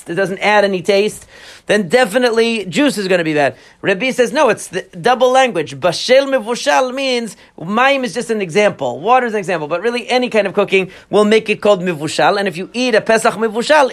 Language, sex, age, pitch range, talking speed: English, male, 40-59, 185-235 Hz, 215 wpm